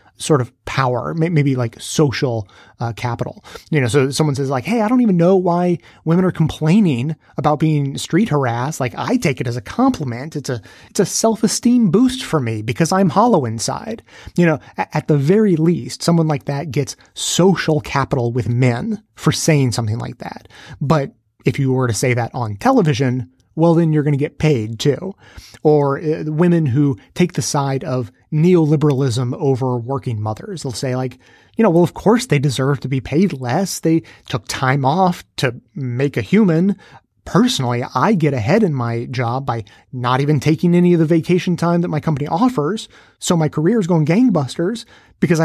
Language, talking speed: English, 190 wpm